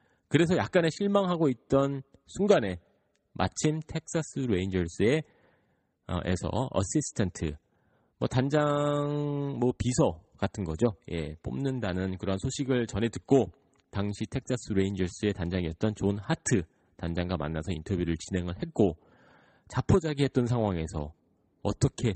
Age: 30-49